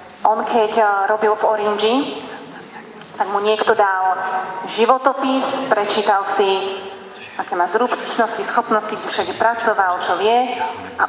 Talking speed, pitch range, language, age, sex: 110 wpm, 195-230 Hz, Slovak, 30-49, female